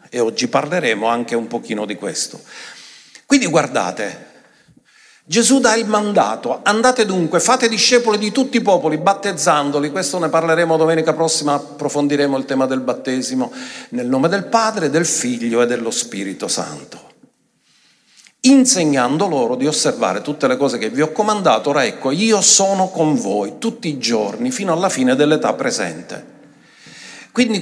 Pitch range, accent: 145-220 Hz, native